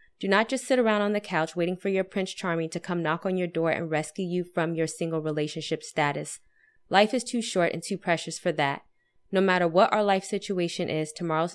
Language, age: English, 20-39